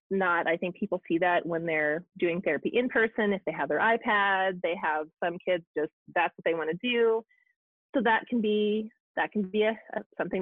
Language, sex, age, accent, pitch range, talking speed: English, female, 30-49, American, 170-225 Hz, 220 wpm